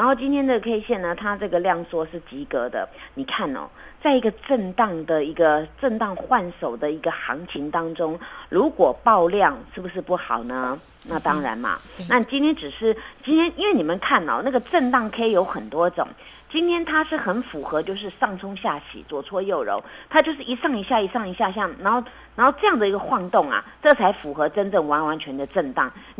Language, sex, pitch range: Chinese, female, 175-275 Hz